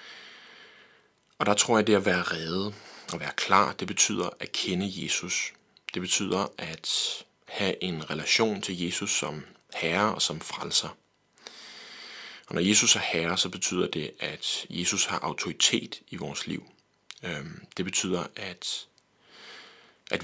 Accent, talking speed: native, 140 wpm